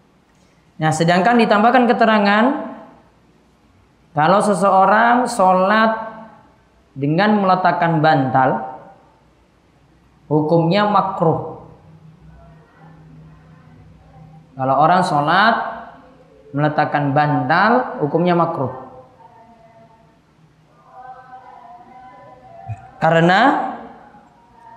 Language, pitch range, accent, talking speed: Indonesian, 155-225 Hz, native, 50 wpm